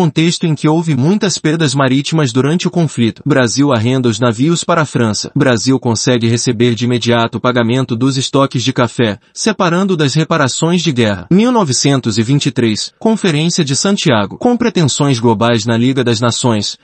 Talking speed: 155 wpm